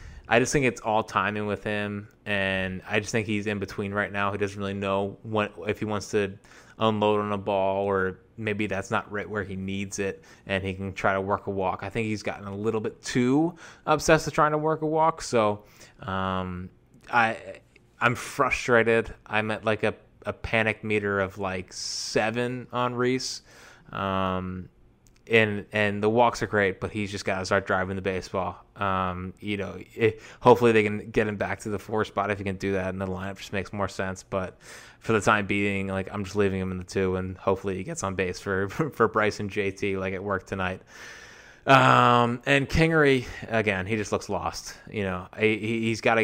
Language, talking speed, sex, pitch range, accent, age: English, 210 wpm, male, 95-110 Hz, American, 20-39